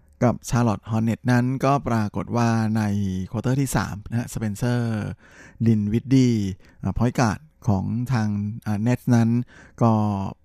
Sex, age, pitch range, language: male, 20-39, 105-120 Hz, Thai